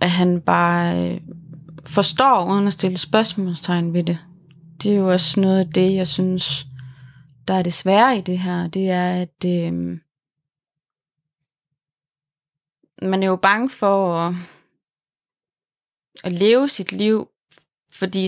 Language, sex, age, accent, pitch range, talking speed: Danish, female, 30-49, native, 165-200 Hz, 135 wpm